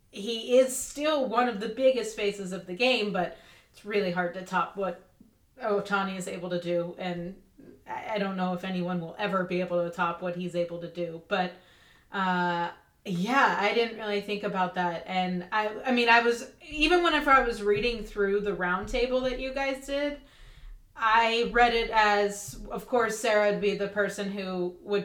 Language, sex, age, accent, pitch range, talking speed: English, female, 30-49, American, 185-240 Hz, 190 wpm